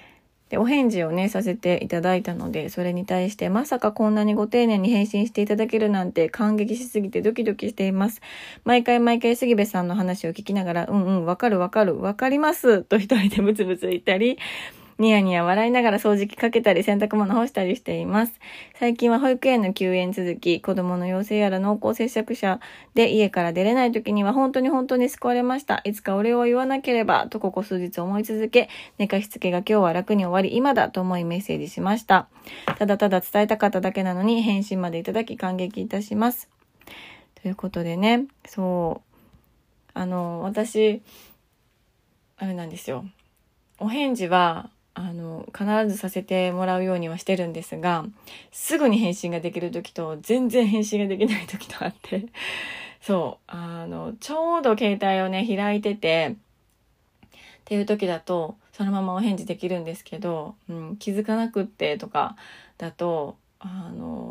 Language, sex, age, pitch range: Japanese, female, 20-39, 185-225 Hz